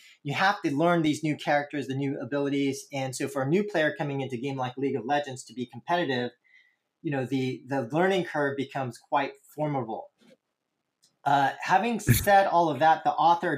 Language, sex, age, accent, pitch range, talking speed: English, male, 30-49, American, 135-175 Hz, 195 wpm